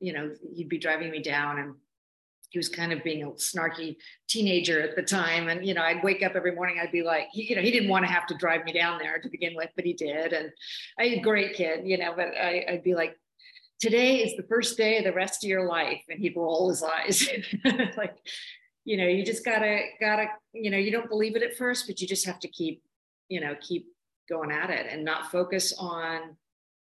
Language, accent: English, American